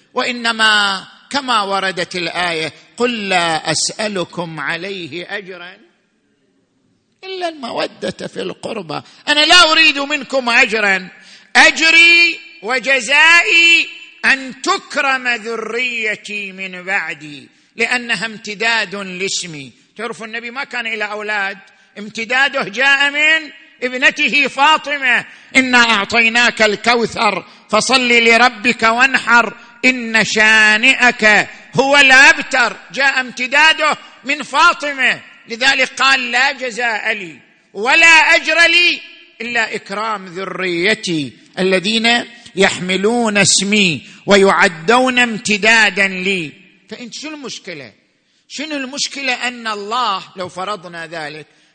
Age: 50-69